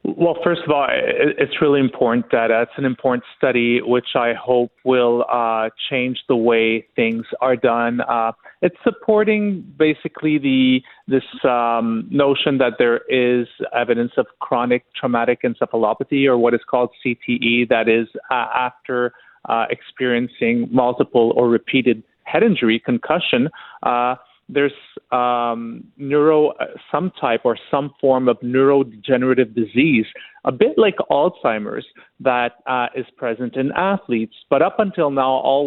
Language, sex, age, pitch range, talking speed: English, male, 30-49, 120-135 Hz, 140 wpm